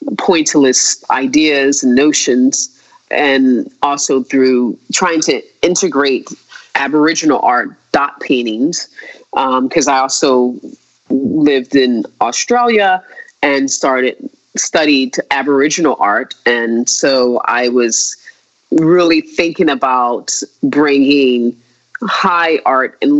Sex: female